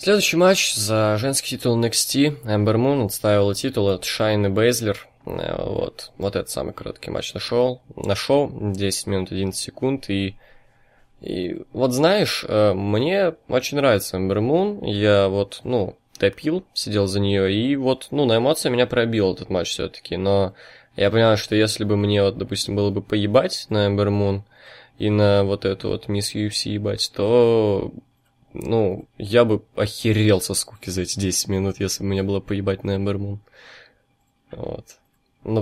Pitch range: 95-115 Hz